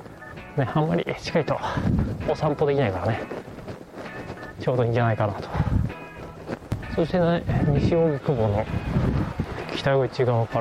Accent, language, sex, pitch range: native, Japanese, male, 110-145 Hz